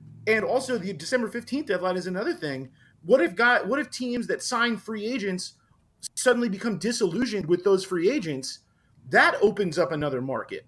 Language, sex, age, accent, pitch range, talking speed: English, male, 30-49, American, 165-225 Hz, 175 wpm